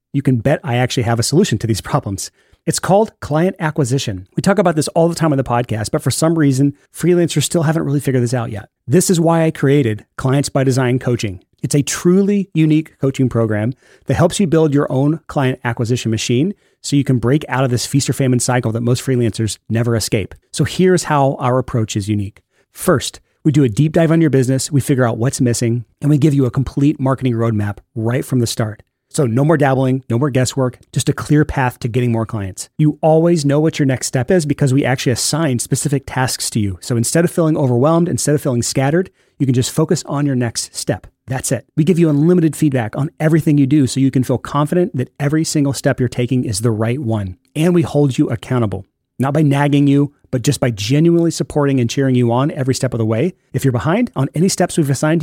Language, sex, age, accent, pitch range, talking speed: English, male, 30-49, American, 120-155 Hz, 235 wpm